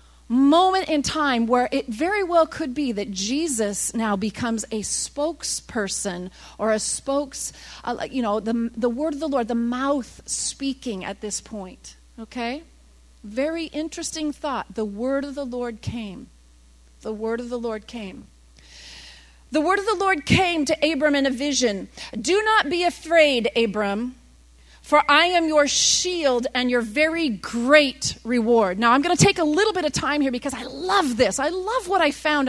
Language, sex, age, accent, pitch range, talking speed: English, female, 40-59, American, 215-315 Hz, 175 wpm